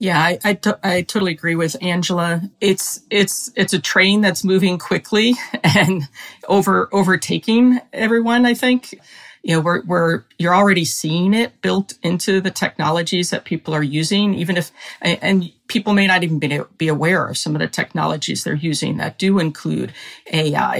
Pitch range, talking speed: 165-195 Hz, 170 wpm